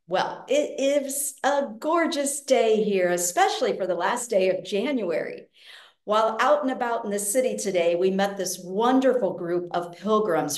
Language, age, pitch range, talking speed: English, 50-69, 170-245 Hz, 165 wpm